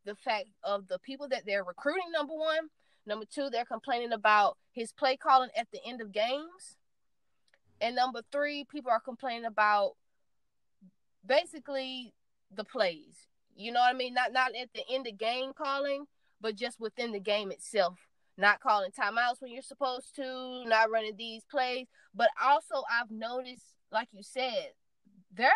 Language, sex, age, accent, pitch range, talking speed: English, female, 20-39, American, 215-275 Hz, 165 wpm